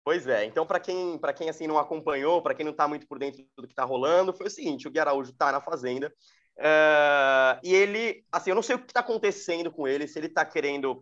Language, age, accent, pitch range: Portuguese, 20-39, Brazilian, 145-210 Hz